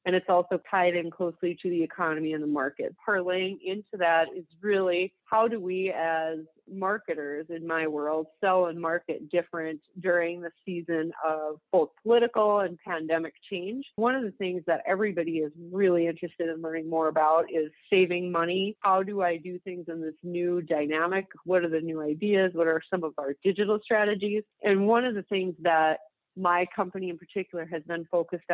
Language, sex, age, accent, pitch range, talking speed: English, female, 30-49, American, 165-190 Hz, 185 wpm